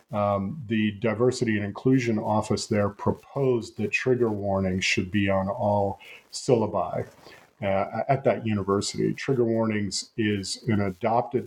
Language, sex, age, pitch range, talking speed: English, male, 40-59, 100-120 Hz, 130 wpm